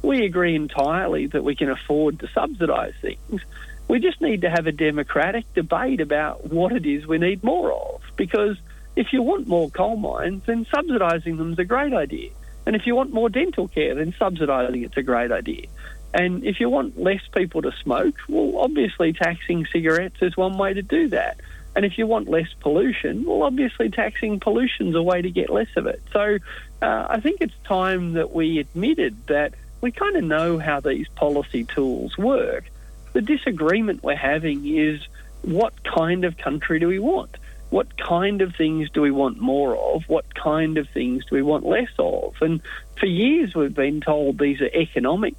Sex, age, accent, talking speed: male, 50-69, Australian, 195 wpm